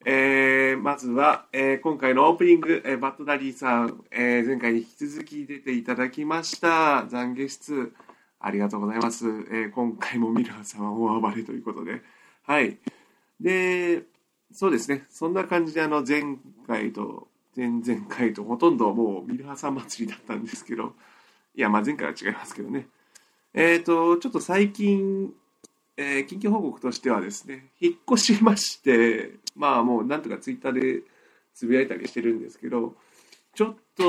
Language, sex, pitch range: Japanese, male, 120-180 Hz